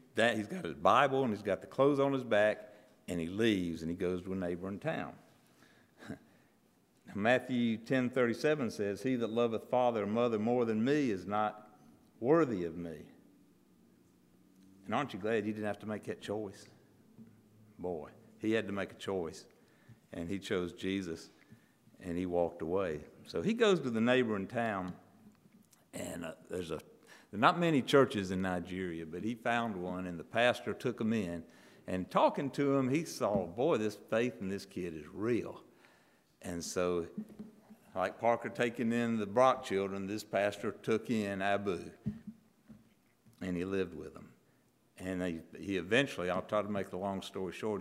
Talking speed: 170 wpm